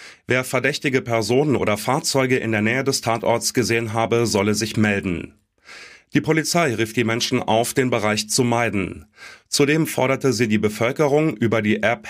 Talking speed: 165 wpm